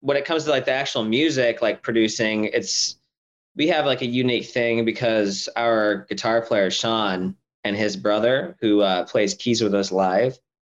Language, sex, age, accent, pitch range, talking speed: English, male, 20-39, American, 105-125 Hz, 180 wpm